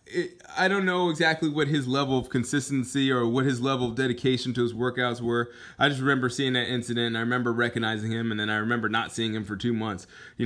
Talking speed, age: 235 wpm, 20-39